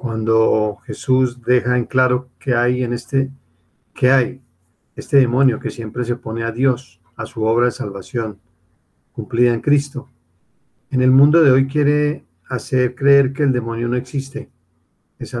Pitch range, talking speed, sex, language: 105-130 Hz, 160 wpm, male, Spanish